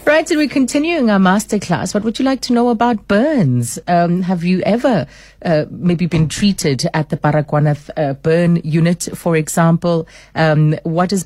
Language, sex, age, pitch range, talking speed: English, female, 30-49, 150-175 Hz, 180 wpm